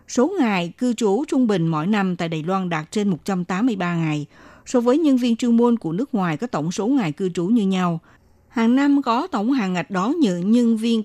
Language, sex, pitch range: Vietnamese, female, 175-235 Hz